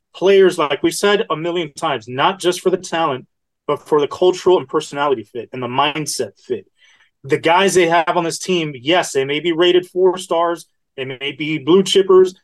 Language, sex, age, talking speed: English, male, 30-49, 205 wpm